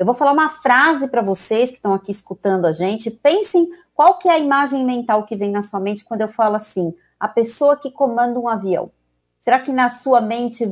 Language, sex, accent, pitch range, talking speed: Portuguese, female, Brazilian, 205-275 Hz, 225 wpm